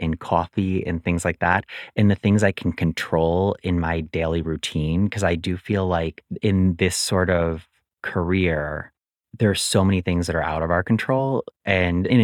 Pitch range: 85-105 Hz